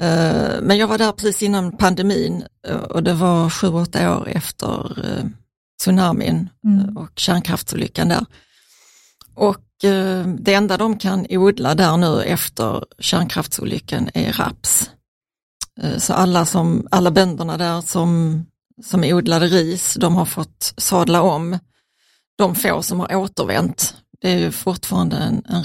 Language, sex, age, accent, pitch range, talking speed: Swedish, female, 30-49, native, 170-200 Hz, 130 wpm